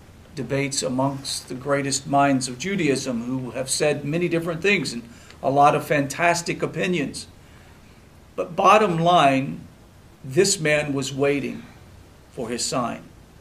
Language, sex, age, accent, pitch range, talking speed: English, male, 50-69, American, 120-165 Hz, 130 wpm